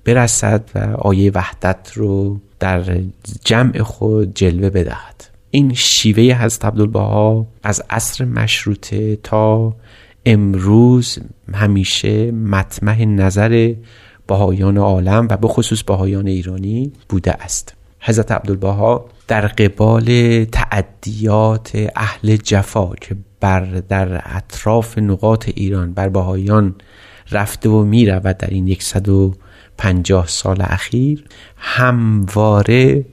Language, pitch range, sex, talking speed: Persian, 100-115 Hz, male, 105 wpm